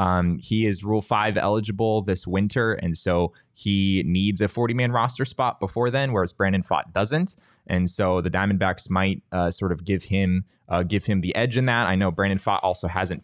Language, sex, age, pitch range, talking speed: English, male, 20-39, 95-120 Hz, 205 wpm